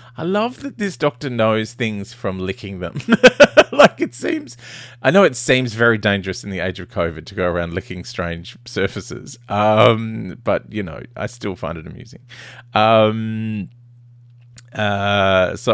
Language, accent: English, Australian